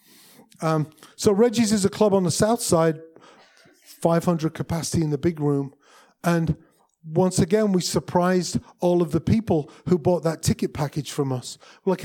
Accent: British